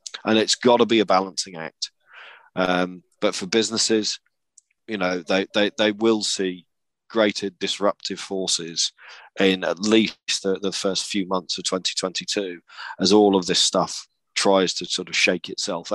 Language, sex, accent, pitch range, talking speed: English, male, British, 90-105 Hz, 160 wpm